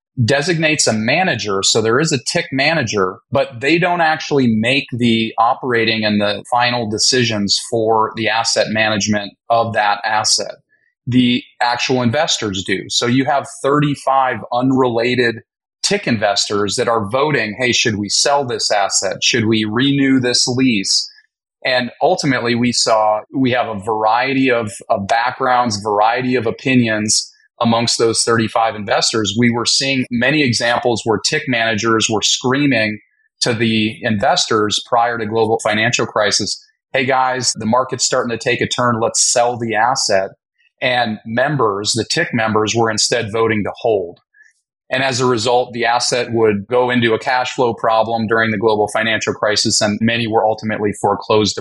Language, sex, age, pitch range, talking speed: English, male, 30-49, 110-130 Hz, 155 wpm